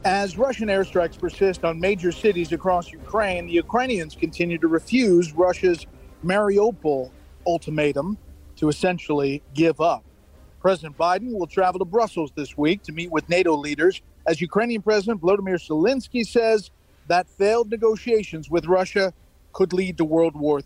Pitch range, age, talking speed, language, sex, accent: 155-195 Hz, 40-59, 145 wpm, English, male, American